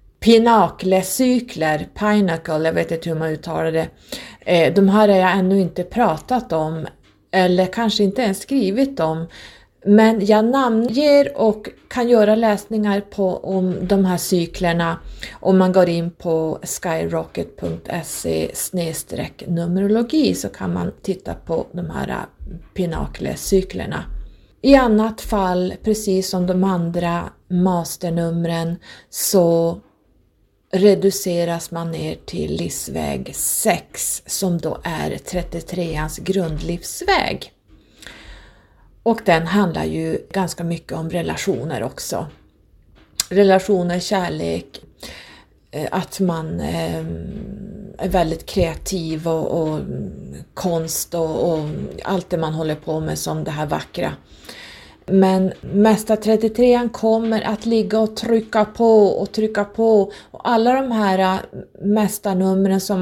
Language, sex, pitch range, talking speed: Swedish, female, 165-205 Hz, 115 wpm